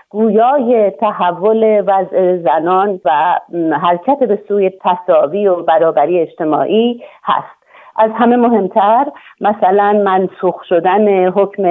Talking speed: 95 wpm